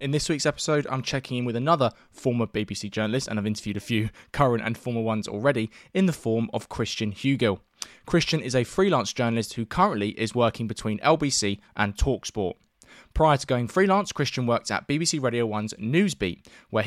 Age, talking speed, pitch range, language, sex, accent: 20-39, 190 wpm, 110-145 Hz, English, male, British